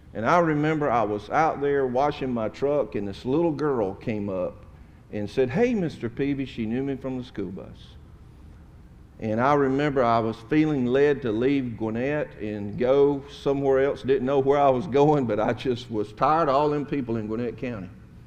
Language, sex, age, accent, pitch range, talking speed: English, male, 50-69, American, 105-145 Hz, 195 wpm